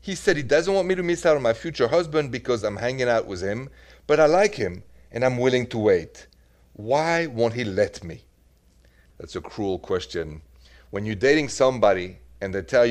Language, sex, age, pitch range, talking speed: English, male, 40-59, 85-130 Hz, 205 wpm